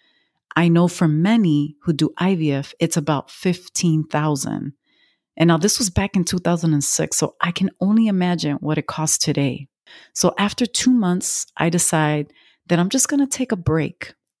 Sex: female